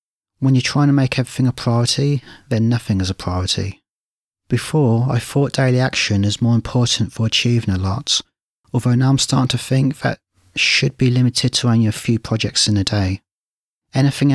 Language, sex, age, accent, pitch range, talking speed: English, male, 30-49, British, 105-125 Hz, 185 wpm